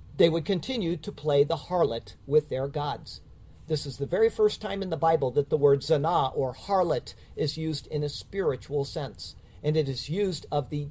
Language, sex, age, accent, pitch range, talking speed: English, male, 50-69, American, 145-200 Hz, 205 wpm